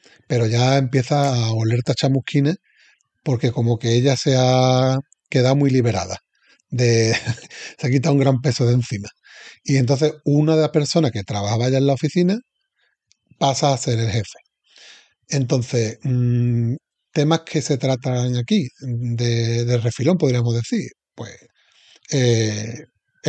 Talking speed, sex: 140 wpm, male